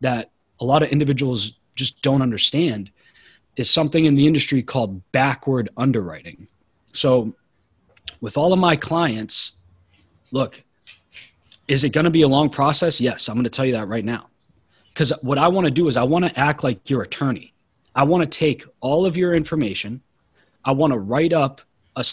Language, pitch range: English, 115-150 Hz